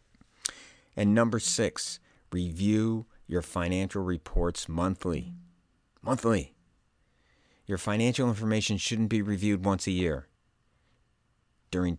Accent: American